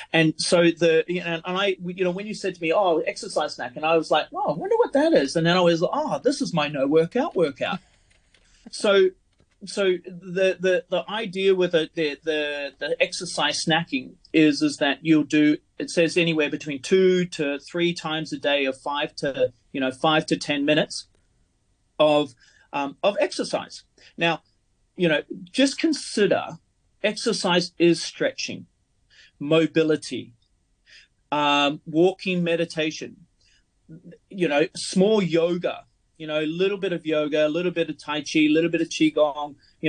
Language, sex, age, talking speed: English, male, 30-49, 170 wpm